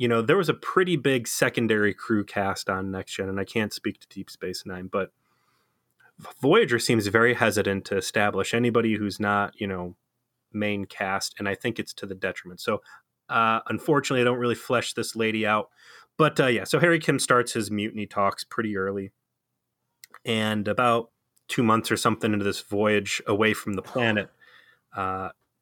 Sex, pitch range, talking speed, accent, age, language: male, 100-120 Hz, 185 wpm, American, 30-49, English